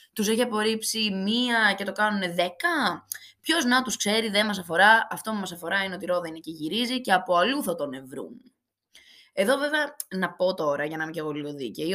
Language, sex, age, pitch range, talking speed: Greek, female, 20-39, 170-240 Hz, 210 wpm